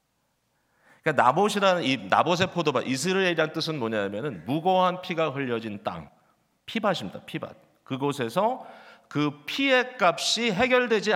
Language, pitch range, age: Korean, 145-220 Hz, 40-59